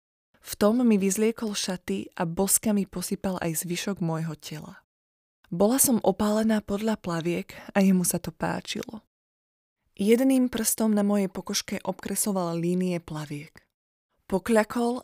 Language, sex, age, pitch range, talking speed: Slovak, female, 20-39, 175-215 Hz, 130 wpm